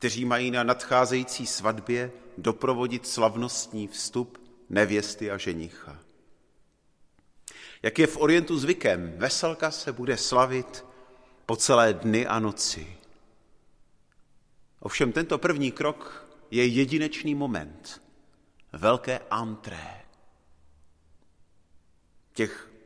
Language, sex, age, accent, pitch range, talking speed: Czech, male, 40-59, native, 105-135 Hz, 90 wpm